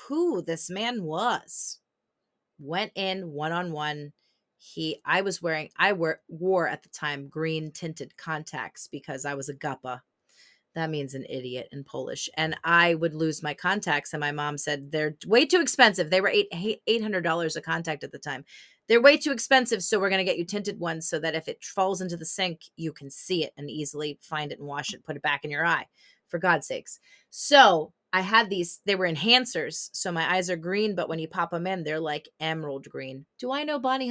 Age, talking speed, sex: 30-49, 215 wpm, female